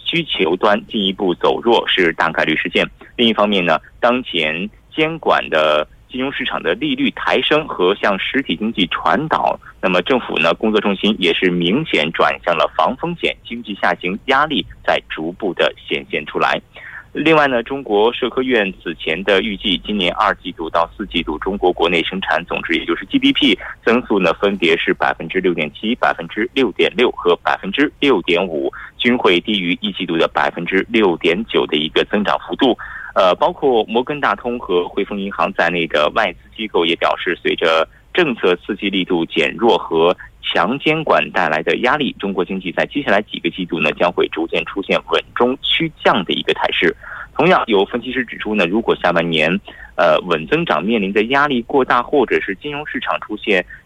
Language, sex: Korean, male